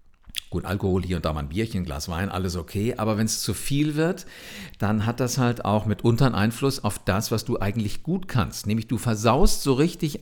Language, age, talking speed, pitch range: German, 50-69, 230 wpm, 95-130 Hz